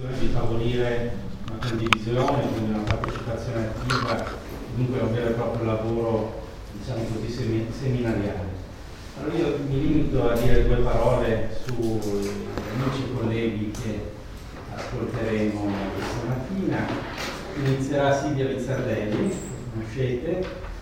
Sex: male